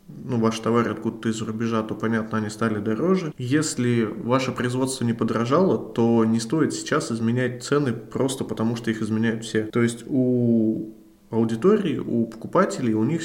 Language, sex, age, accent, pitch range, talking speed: Russian, male, 20-39, native, 115-130 Hz, 165 wpm